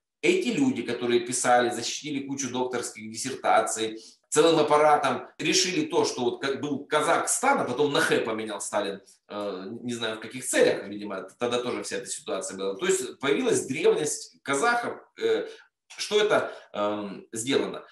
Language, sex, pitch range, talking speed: Russian, male, 120-190 Hz, 135 wpm